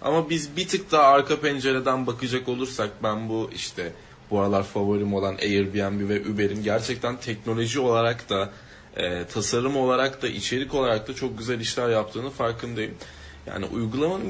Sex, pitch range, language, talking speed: male, 110-140 Hz, Turkish, 155 wpm